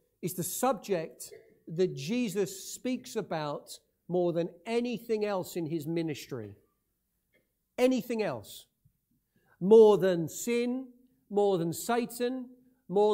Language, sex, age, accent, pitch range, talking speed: English, male, 50-69, British, 170-235 Hz, 105 wpm